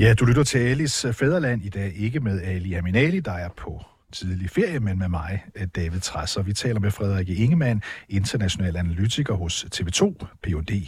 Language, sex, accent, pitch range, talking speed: Danish, male, native, 95-125 Hz, 175 wpm